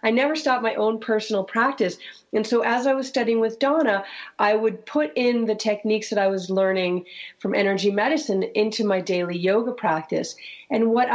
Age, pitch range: 40-59, 190-235 Hz